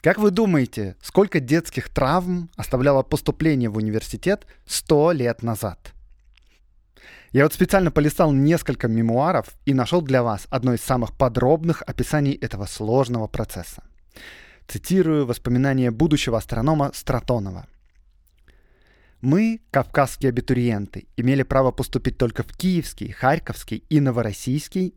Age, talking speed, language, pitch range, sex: 20-39, 115 wpm, Russian, 115-160 Hz, male